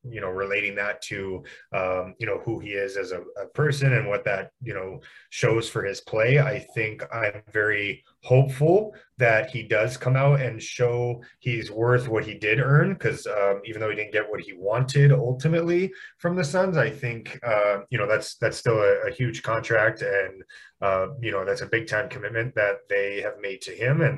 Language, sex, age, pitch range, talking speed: English, male, 30-49, 100-135 Hz, 205 wpm